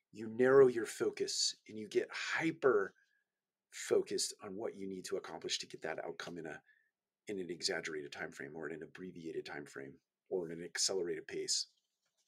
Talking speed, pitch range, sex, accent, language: 170 wpm, 345-420 Hz, male, American, English